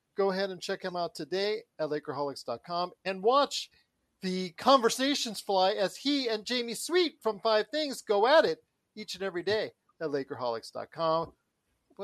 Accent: American